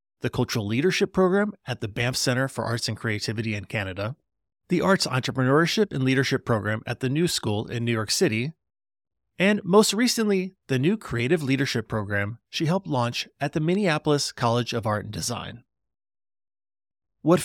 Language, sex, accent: English, male, American